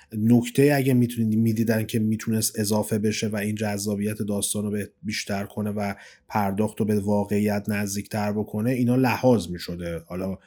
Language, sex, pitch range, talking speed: Persian, male, 110-155 Hz, 150 wpm